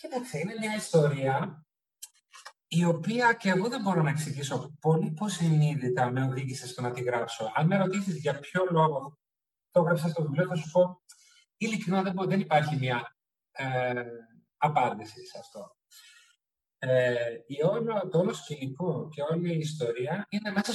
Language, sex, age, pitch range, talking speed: Greek, male, 30-49, 145-185 Hz, 160 wpm